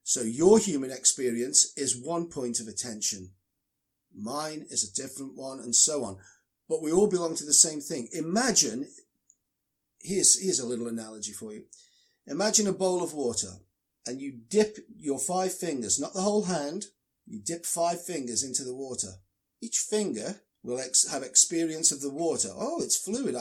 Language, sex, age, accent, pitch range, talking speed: English, male, 40-59, British, 140-200 Hz, 170 wpm